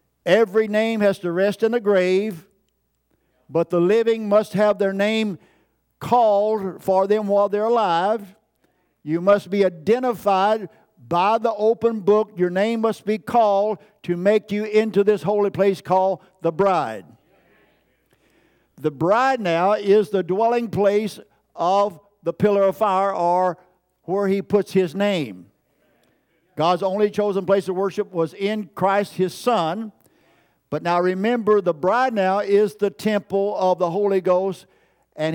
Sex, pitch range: male, 180-210 Hz